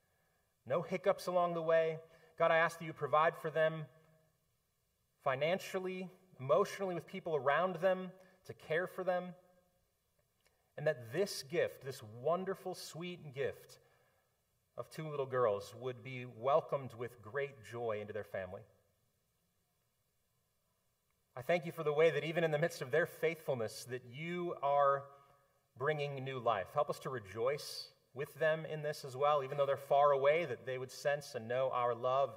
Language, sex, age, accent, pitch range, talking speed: English, male, 30-49, American, 125-165 Hz, 160 wpm